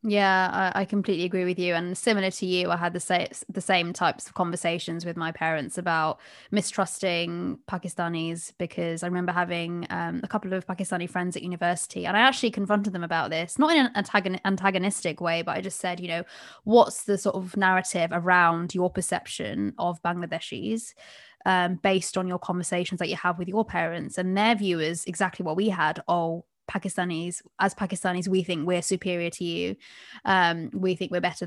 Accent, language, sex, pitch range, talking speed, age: British, English, female, 170-195 Hz, 190 wpm, 20-39